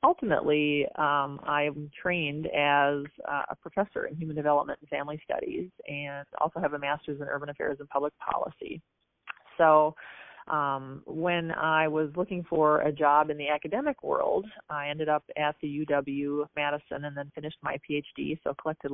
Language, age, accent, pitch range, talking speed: English, 30-49, American, 145-160 Hz, 160 wpm